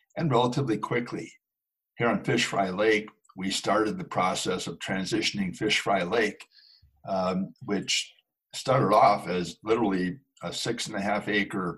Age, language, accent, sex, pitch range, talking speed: 60-79, English, American, male, 90-115 Hz, 150 wpm